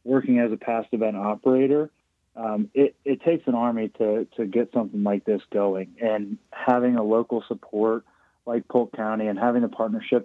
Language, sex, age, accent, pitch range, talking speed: English, male, 30-49, American, 105-120 Hz, 180 wpm